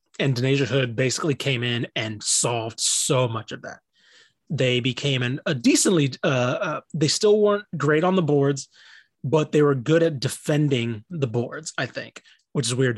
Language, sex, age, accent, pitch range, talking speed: English, male, 30-49, American, 125-160 Hz, 180 wpm